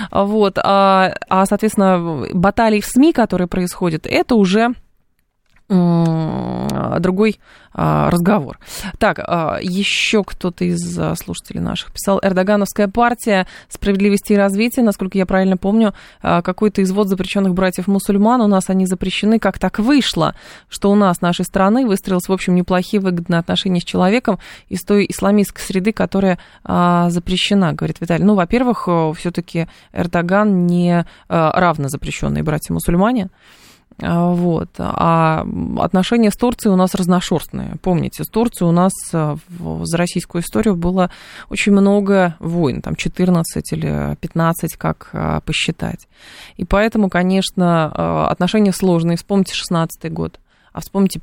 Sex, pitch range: female, 165-200 Hz